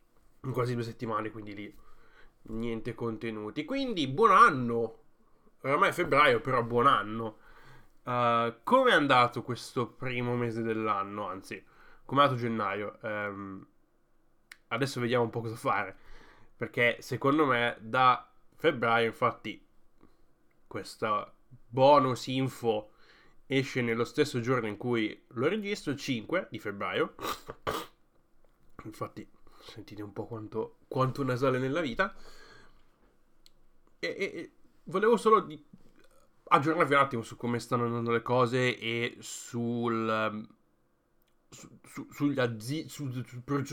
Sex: male